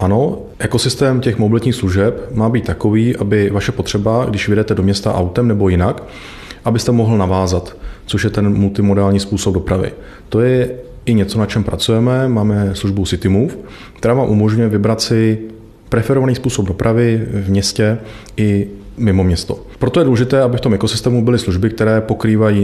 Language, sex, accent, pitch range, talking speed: Czech, male, native, 100-120 Hz, 160 wpm